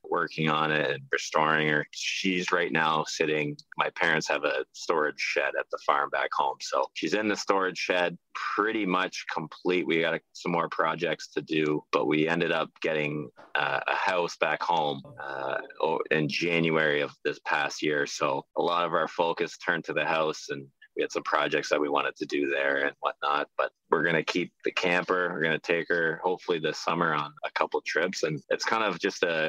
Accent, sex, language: American, male, English